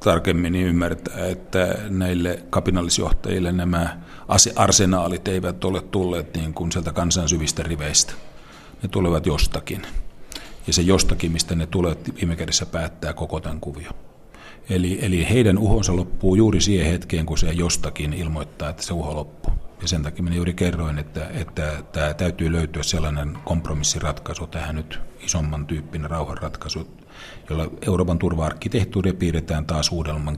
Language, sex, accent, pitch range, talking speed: Finnish, male, native, 75-90 Hz, 140 wpm